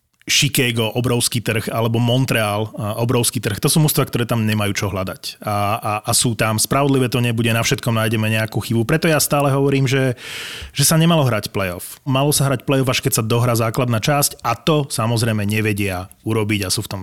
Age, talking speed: 30-49, 200 wpm